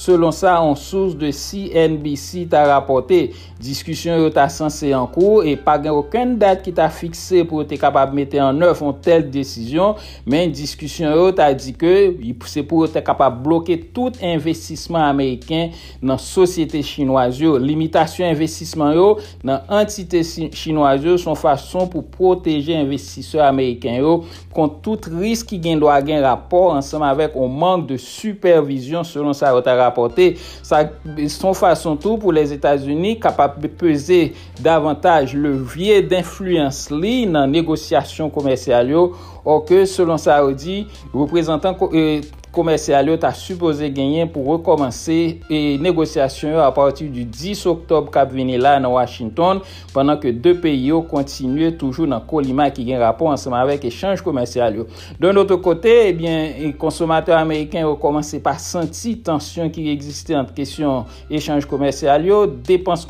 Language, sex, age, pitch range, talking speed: English, male, 60-79, 140-170 Hz, 145 wpm